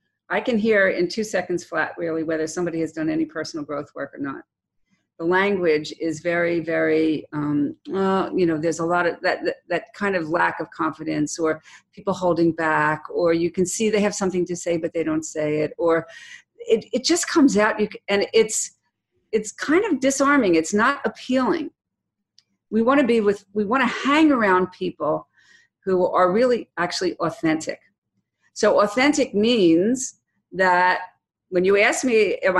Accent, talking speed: American, 180 wpm